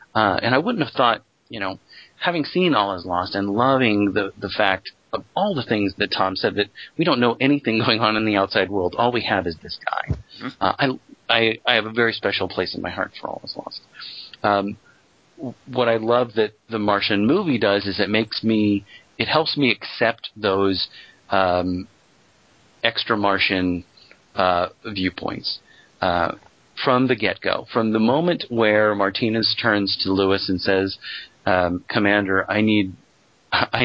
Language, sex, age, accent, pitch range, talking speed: English, male, 40-59, American, 95-120 Hz, 180 wpm